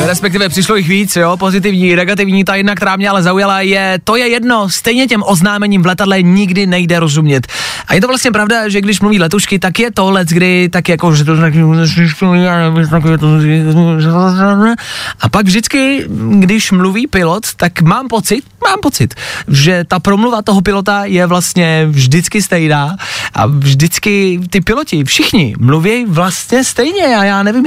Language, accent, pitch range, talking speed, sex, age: Czech, native, 140-205 Hz, 175 wpm, male, 20-39